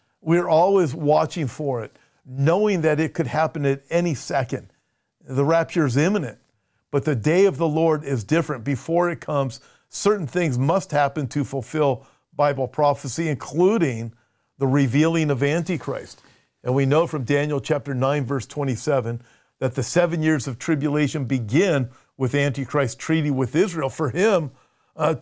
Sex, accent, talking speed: male, American, 155 wpm